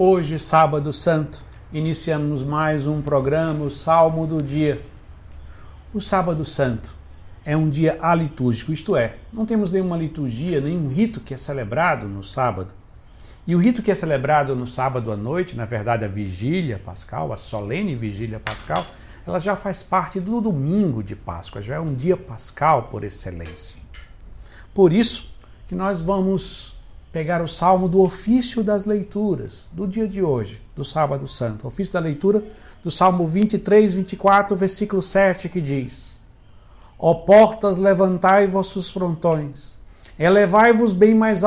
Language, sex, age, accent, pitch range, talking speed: Portuguese, male, 60-79, Brazilian, 110-185 Hz, 150 wpm